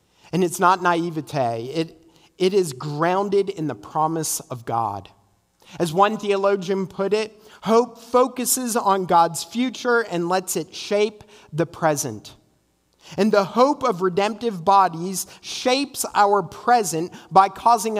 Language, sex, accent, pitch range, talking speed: English, male, American, 150-205 Hz, 135 wpm